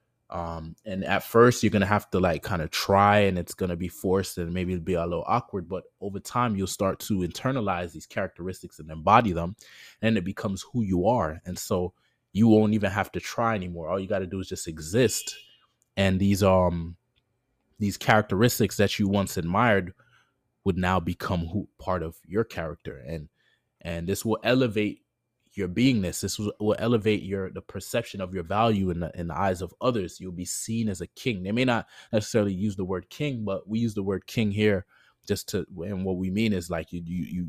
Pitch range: 90-110 Hz